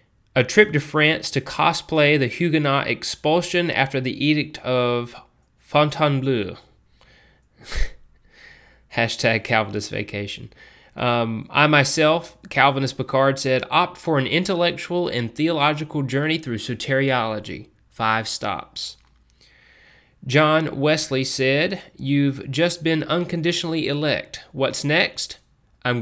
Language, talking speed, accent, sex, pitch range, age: English, 105 wpm, American, male, 115-150 Hz, 30-49